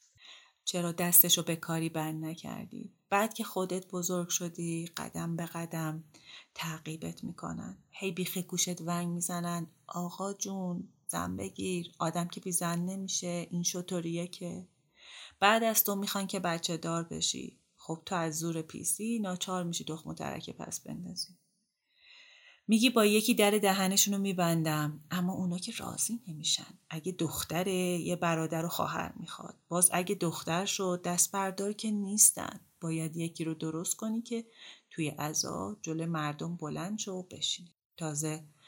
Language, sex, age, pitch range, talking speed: Persian, female, 30-49, 160-195 Hz, 145 wpm